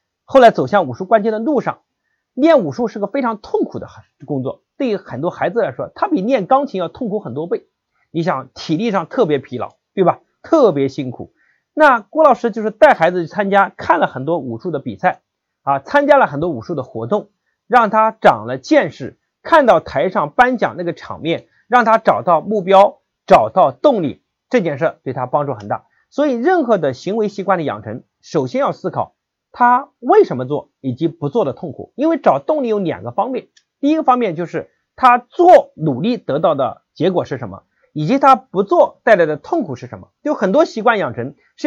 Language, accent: Chinese, native